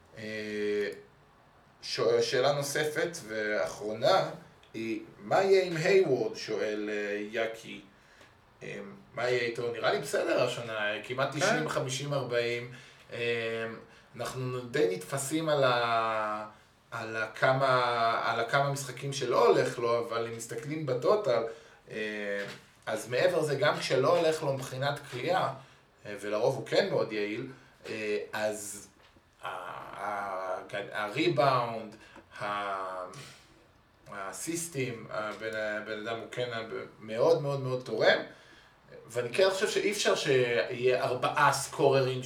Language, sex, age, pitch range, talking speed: Hebrew, male, 20-39, 110-140 Hz, 100 wpm